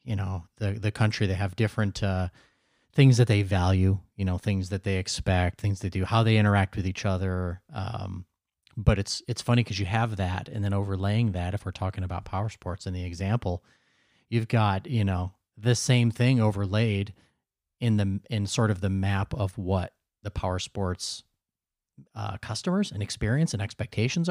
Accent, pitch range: American, 95-115 Hz